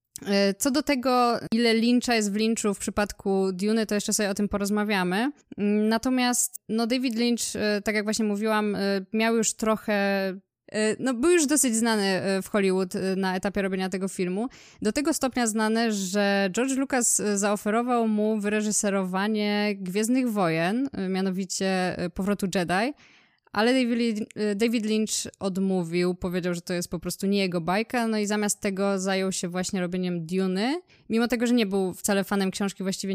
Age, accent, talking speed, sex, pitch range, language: 20-39, native, 155 wpm, female, 195-230 Hz, Polish